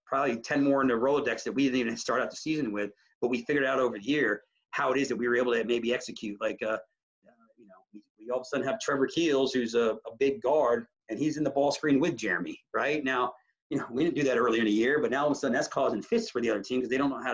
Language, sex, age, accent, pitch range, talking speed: English, male, 30-49, American, 120-150 Hz, 310 wpm